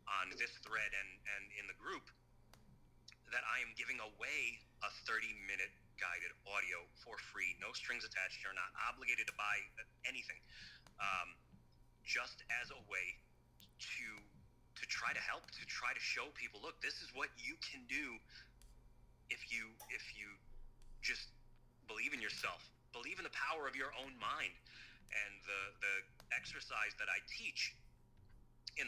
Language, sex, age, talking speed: English, male, 30-49, 155 wpm